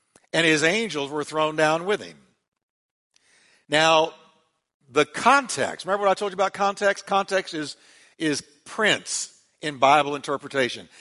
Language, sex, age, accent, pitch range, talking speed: English, male, 60-79, American, 150-205 Hz, 135 wpm